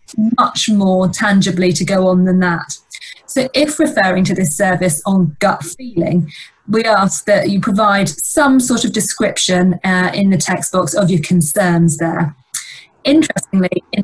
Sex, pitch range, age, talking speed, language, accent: female, 180-225 Hz, 20-39, 160 wpm, English, British